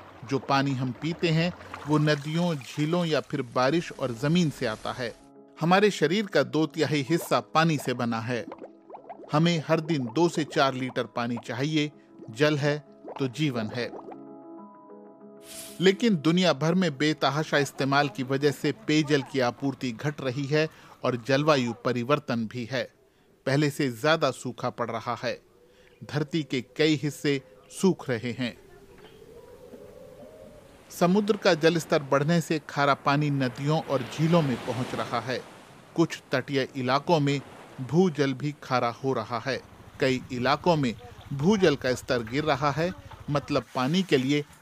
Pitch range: 125-160 Hz